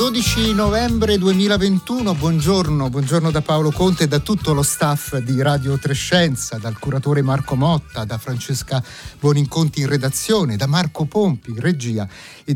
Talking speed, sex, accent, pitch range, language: 155 wpm, male, native, 125-175 Hz, Italian